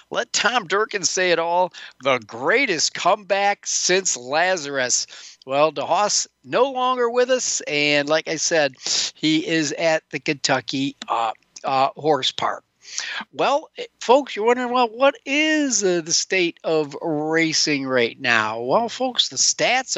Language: English